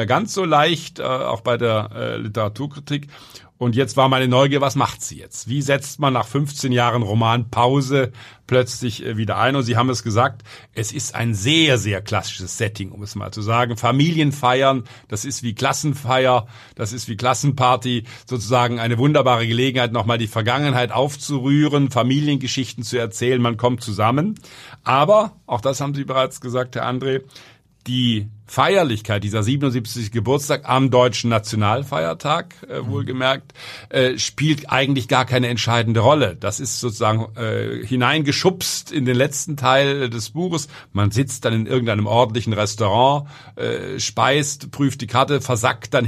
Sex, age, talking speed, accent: male, 50-69, 145 wpm, German